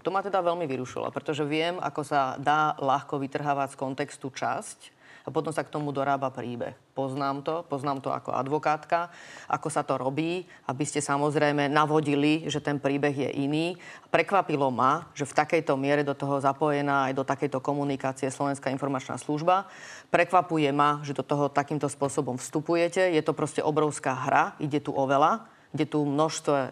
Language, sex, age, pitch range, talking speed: Slovak, female, 30-49, 140-160 Hz, 170 wpm